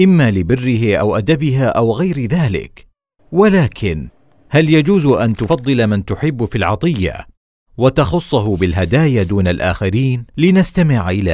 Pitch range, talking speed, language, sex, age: 90-135 Hz, 115 wpm, Arabic, male, 40-59